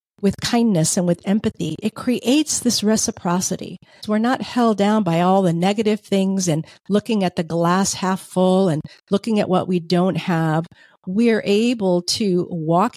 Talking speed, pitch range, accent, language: 165 wpm, 175-220 Hz, American, English